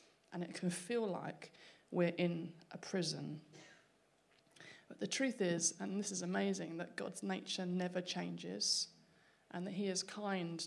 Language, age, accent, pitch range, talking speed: English, 30-49, British, 165-190 Hz, 150 wpm